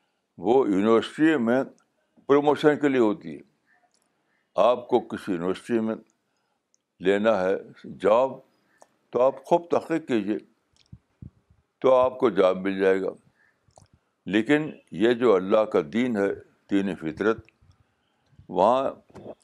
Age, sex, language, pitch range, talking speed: 60-79, male, Urdu, 105-130 Hz, 115 wpm